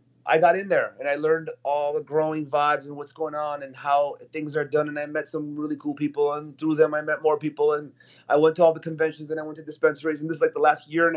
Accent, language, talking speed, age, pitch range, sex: American, English, 290 wpm, 30-49, 130-155 Hz, male